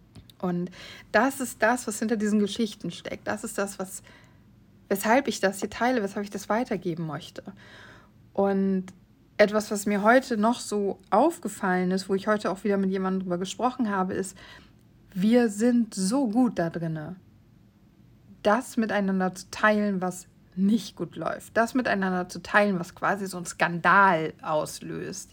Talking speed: 160 wpm